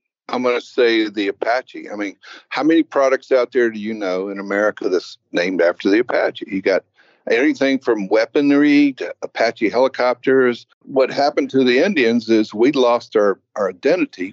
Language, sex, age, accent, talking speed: English, male, 60-79, American, 175 wpm